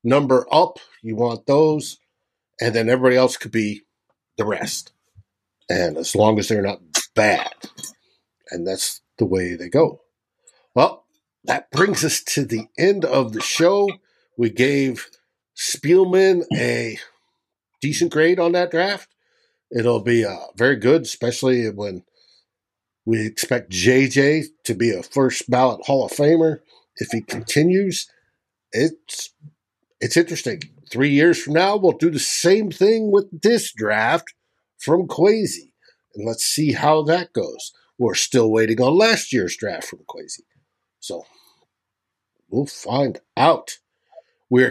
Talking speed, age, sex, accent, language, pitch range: 140 wpm, 50-69, male, American, English, 120-175 Hz